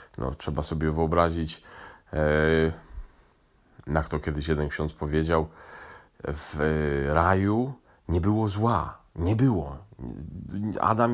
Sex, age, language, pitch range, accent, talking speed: male, 40-59, Polish, 75-90 Hz, native, 95 wpm